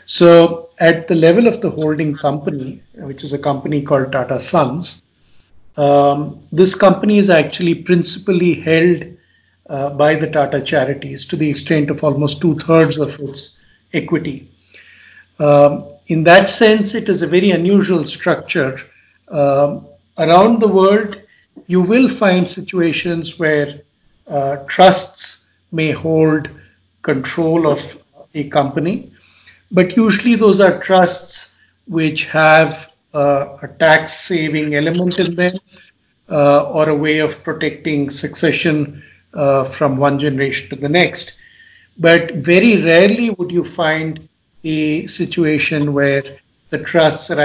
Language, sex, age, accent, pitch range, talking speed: English, male, 60-79, Indian, 145-180 Hz, 130 wpm